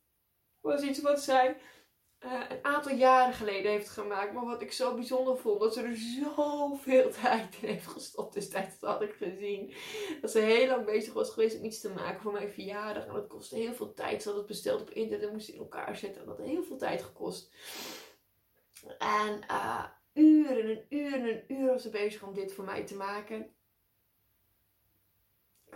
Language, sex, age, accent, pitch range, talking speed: Dutch, female, 20-39, Dutch, 195-285 Hz, 200 wpm